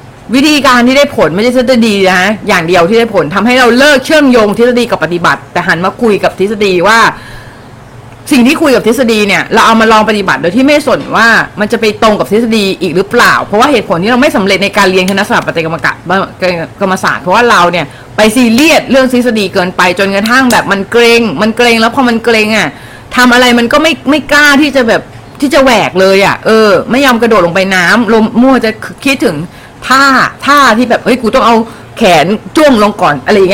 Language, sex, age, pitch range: Thai, female, 20-39, 180-245 Hz